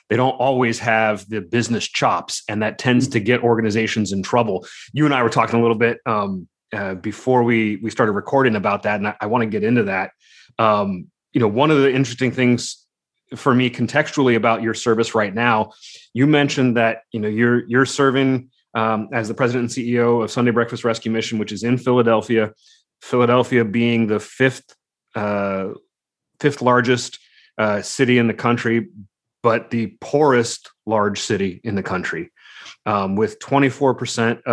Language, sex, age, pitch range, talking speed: English, male, 30-49, 105-125 Hz, 175 wpm